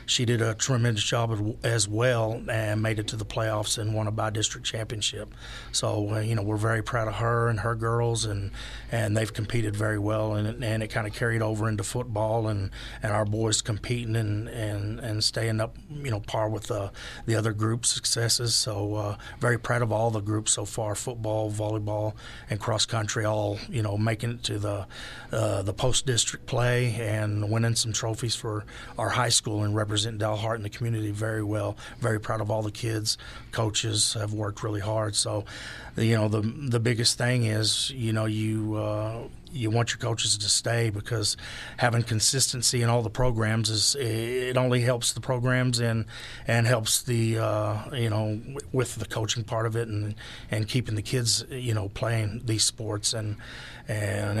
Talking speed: 195 wpm